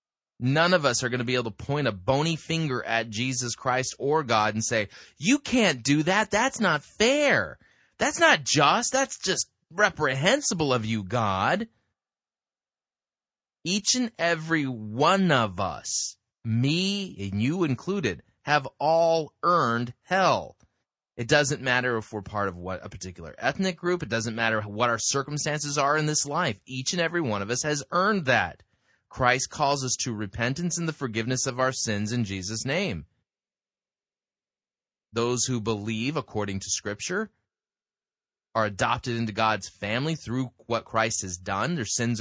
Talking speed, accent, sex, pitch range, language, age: 160 wpm, American, male, 115-165 Hz, English, 20-39